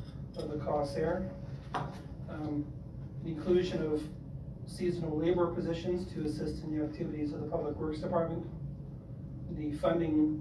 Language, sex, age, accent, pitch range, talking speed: English, male, 40-59, American, 145-160 Hz, 125 wpm